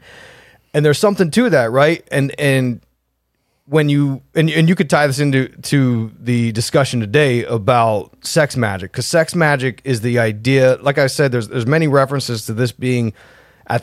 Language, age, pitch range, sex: English, 30-49, 110-145 Hz, male